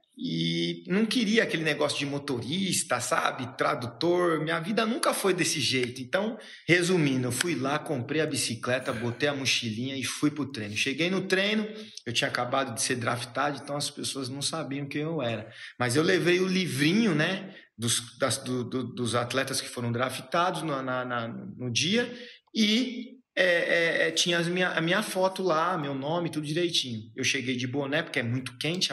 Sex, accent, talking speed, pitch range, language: male, Brazilian, 185 wpm, 130-190 Hz, Portuguese